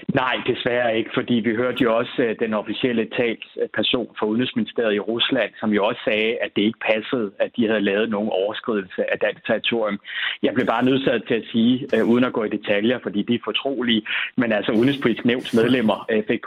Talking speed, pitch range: 195 wpm, 110-135 Hz